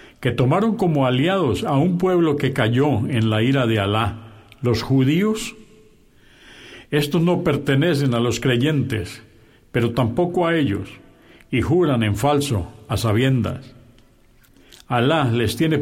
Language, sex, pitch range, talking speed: Spanish, male, 115-145 Hz, 135 wpm